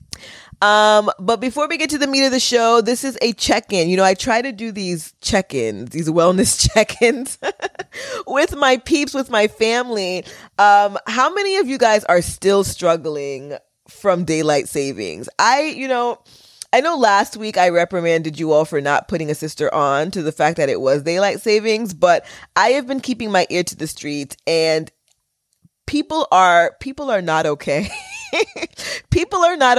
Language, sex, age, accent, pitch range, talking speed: English, female, 20-39, American, 155-250 Hz, 180 wpm